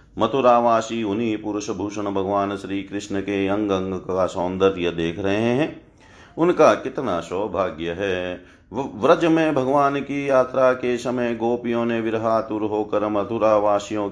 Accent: native